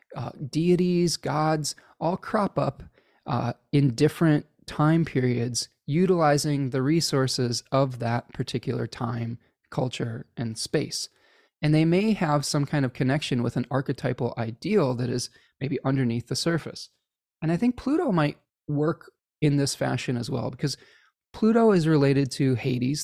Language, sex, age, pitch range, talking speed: English, male, 20-39, 125-155 Hz, 145 wpm